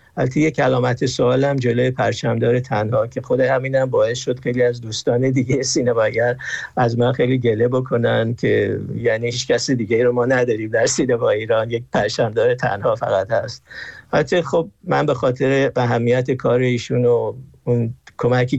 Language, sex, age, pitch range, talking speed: Persian, male, 50-69, 120-135 Hz, 150 wpm